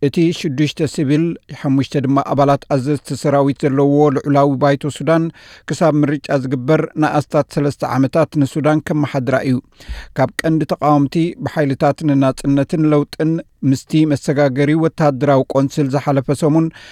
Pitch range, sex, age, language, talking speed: 140-155 Hz, male, 60-79, Amharic, 125 wpm